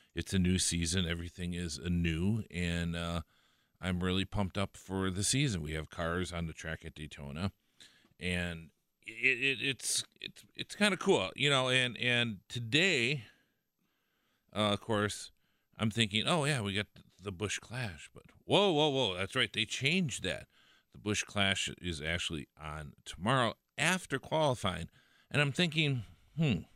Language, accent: English, American